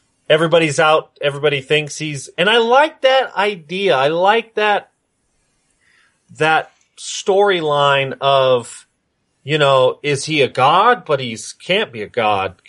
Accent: American